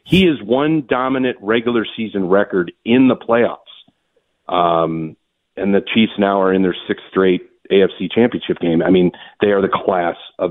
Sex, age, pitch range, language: male, 40-59, 95-110 Hz, English